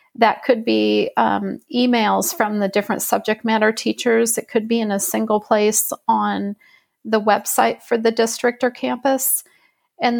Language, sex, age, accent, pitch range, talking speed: English, female, 40-59, American, 210-235 Hz, 160 wpm